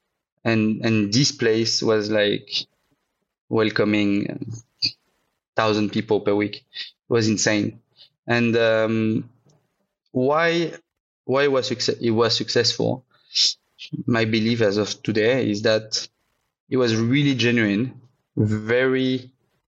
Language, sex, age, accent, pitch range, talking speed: English, male, 20-39, French, 110-130 Hz, 105 wpm